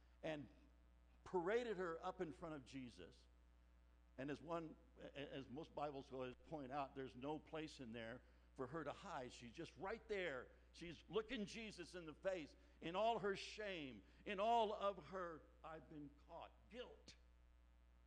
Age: 60-79